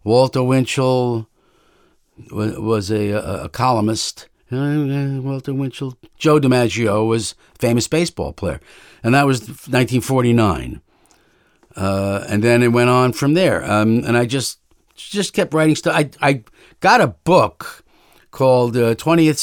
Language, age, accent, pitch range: English, 50-69, American, 115-140 Hz